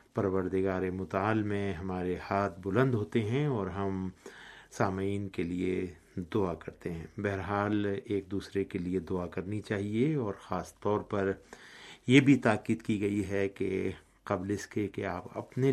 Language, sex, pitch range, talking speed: Urdu, male, 95-105 Hz, 155 wpm